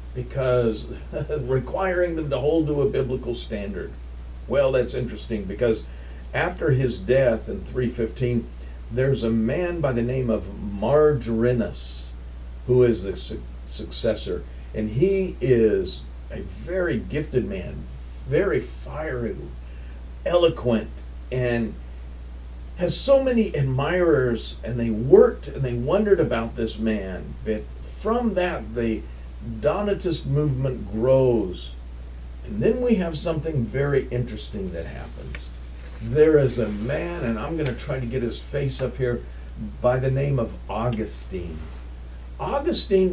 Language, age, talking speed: English, 50-69, 130 wpm